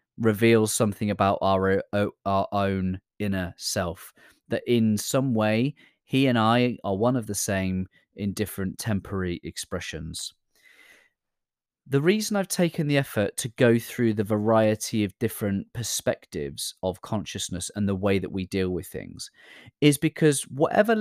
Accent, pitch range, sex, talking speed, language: British, 105-160 Hz, male, 145 wpm, English